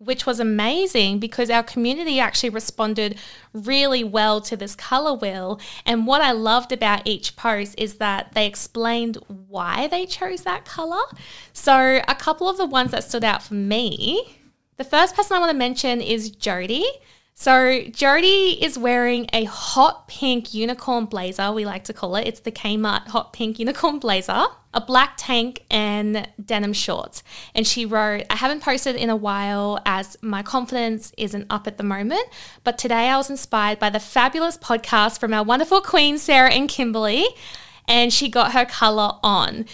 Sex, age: female, 10-29